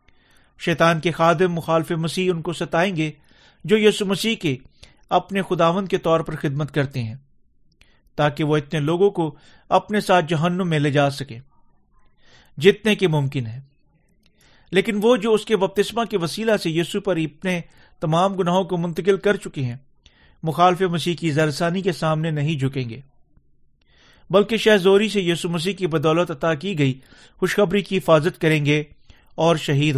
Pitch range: 150-190 Hz